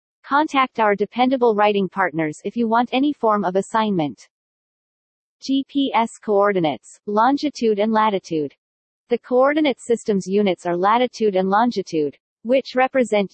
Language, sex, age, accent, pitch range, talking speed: English, female, 40-59, American, 190-245 Hz, 120 wpm